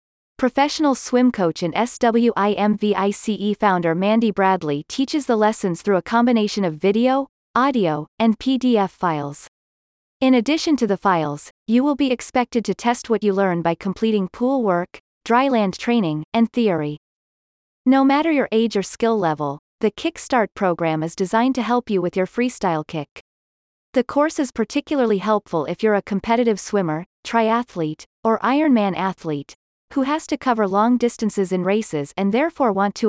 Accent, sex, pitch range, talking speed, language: American, female, 185-245 Hz, 160 wpm, English